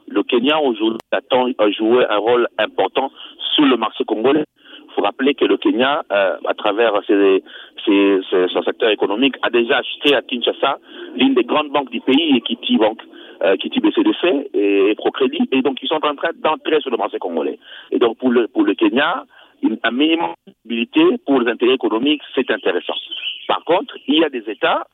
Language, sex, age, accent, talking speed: French, male, 50-69, French, 195 wpm